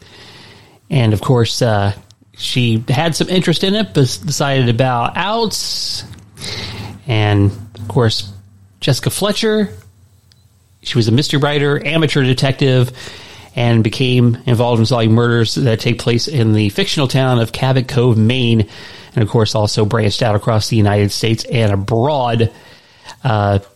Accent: American